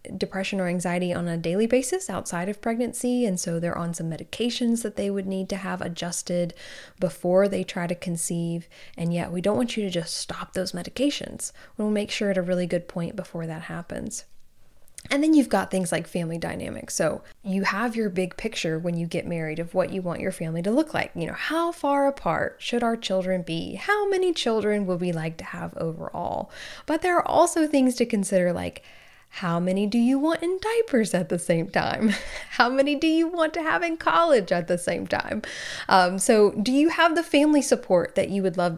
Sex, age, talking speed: female, 10-29, 215 wpm